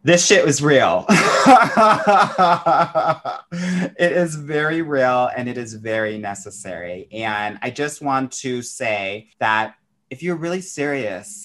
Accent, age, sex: American, 30-49, male